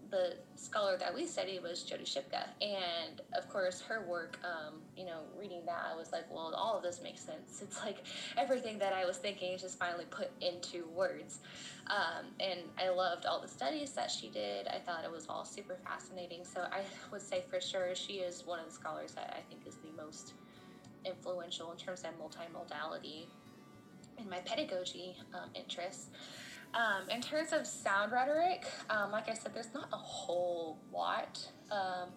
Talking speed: 190 wpm